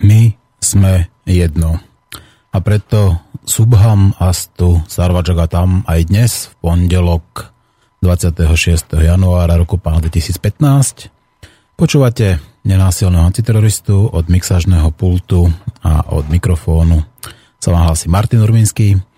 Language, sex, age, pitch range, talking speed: Slovak, male, 30-49, 85-115 Hz, 95 wpm